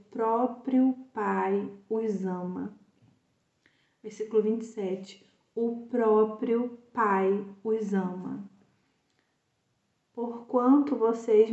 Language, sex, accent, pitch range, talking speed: Portuguese, female, Brazilian, 200-245 Hz, 75 wpm